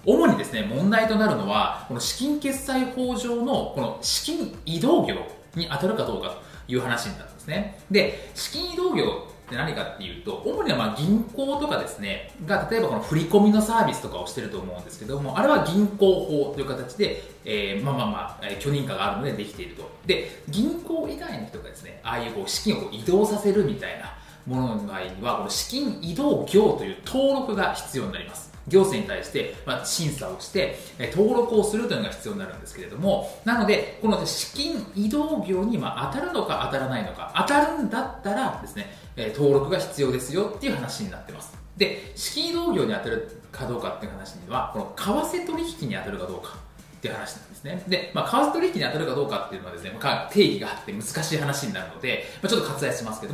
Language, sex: Japanese, male